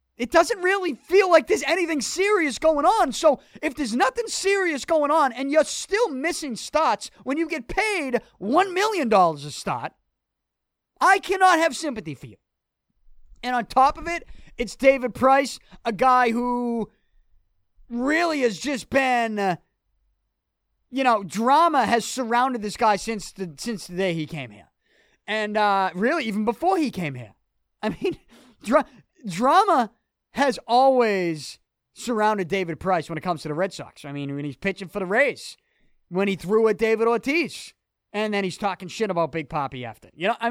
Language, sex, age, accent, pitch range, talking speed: English, male, 30-49, American, 195-270 Hz, 170 wpm